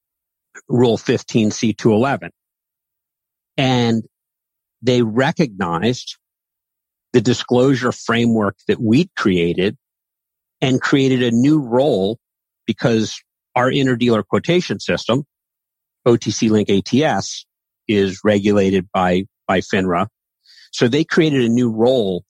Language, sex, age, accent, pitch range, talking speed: English, male, 50-69, American, 100-125 Hz, 95 wpm